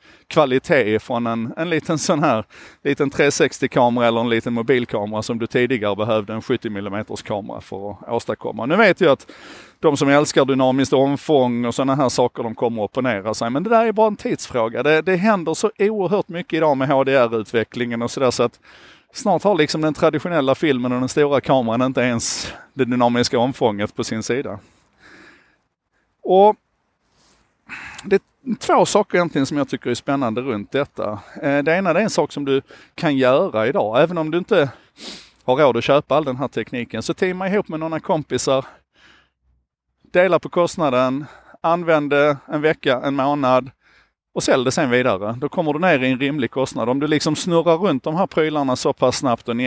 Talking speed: 185 wpm